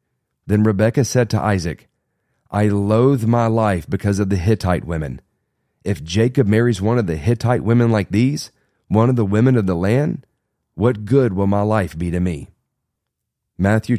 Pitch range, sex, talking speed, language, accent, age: 90-115 Hz, male, 170 wpm, English, American, 40-59